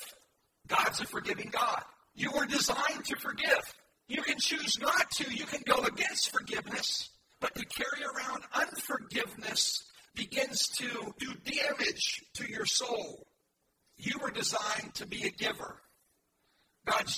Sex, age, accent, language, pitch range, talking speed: male, 50-69, American, English, 240-300 Hz, 120 wpm